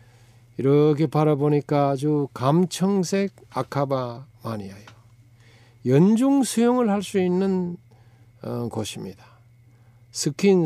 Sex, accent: male, native